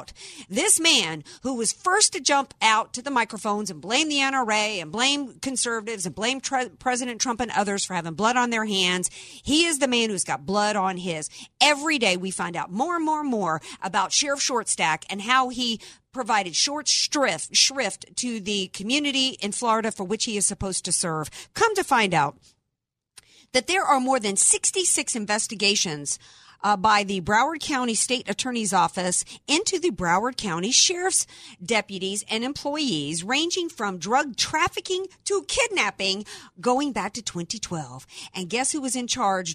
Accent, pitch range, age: American, 190-265 Hz, 50-69